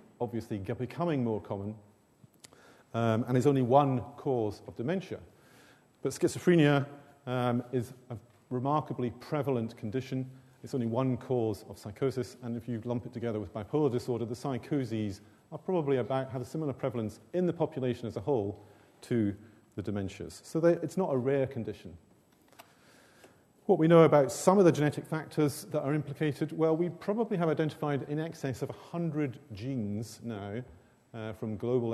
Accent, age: British, 40-59